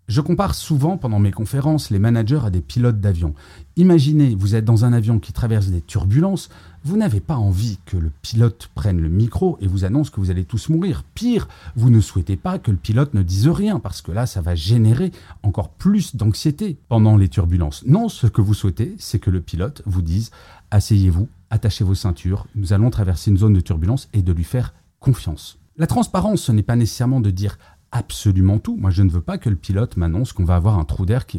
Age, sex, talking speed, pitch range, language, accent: 40-59, male, 220 wpm, 95-130 Hz, French, French